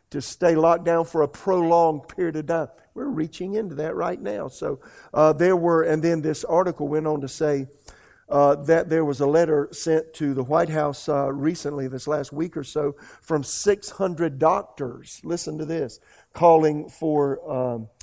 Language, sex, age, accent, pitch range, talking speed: English, male, 50-69, American, 145-170 Hz, 180 wpm